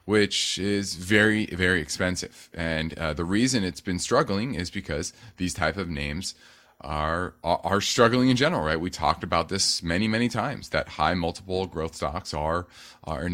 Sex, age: male, 30-49